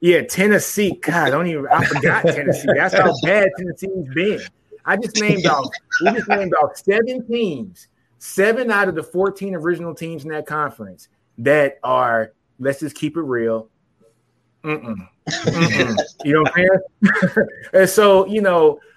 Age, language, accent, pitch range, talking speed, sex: 20-39, English, American, 120-180 Hz, 170 wpm, male